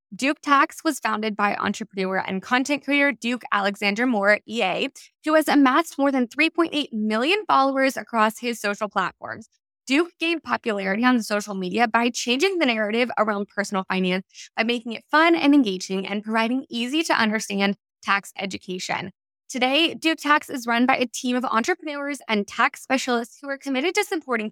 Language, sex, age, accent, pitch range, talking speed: English, female, 20-39, American, 215-285 Hz, 170 wpm